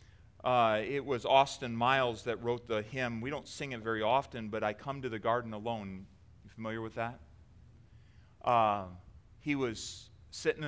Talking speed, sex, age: 170 wpm, male, 30-49